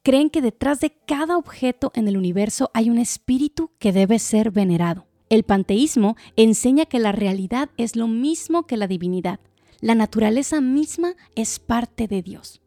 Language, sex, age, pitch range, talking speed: Spanish, female, 30-49, 195-255 Hz, 165 wpm